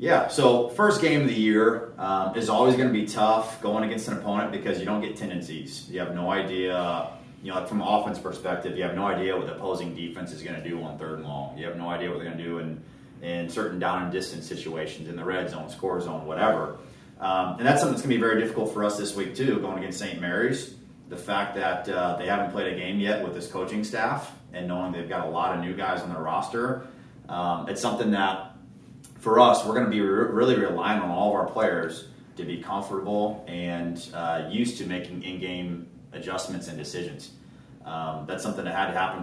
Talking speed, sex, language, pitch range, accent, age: 235 wpm, male, English, 85-105 Hz, American, 30-49